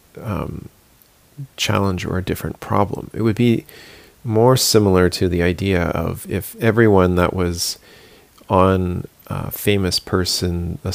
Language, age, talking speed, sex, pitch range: English, 40-59, 130 wpm, male, 85-100 Hz